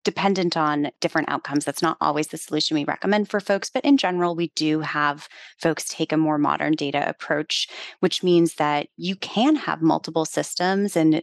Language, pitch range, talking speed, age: English, 150-170 Hz, 185 wpm, 20-39